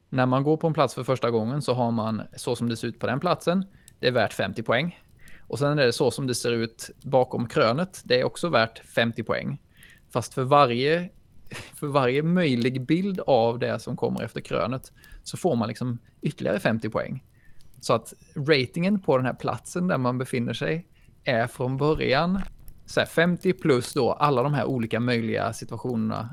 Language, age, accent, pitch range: Swedish, 20-39, native, 115-150 Hz